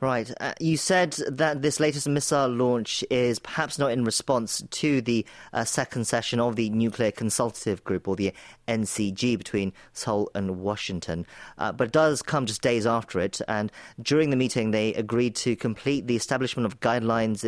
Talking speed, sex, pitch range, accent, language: 180 wpm, male, 110-140 Hz, British, English